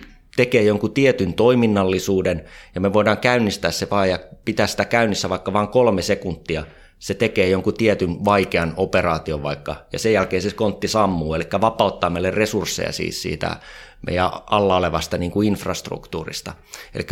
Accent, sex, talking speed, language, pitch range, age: native, male, 155 wpm, Finnish, 85-105 Hz, 20-39